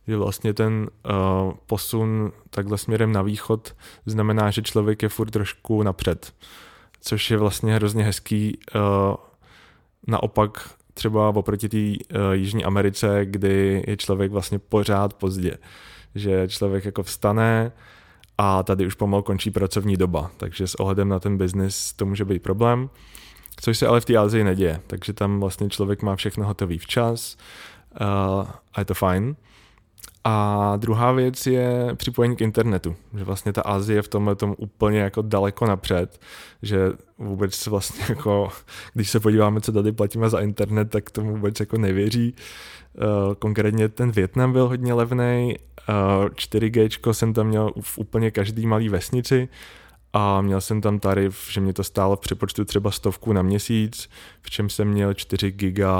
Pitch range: 100-110 Hz